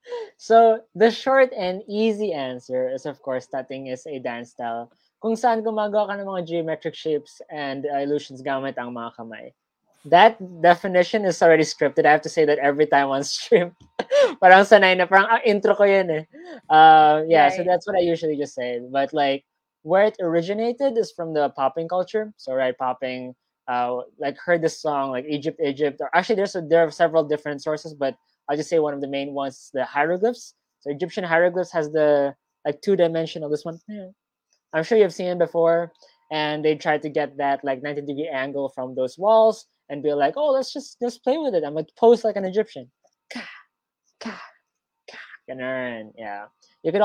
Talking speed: 205 wpm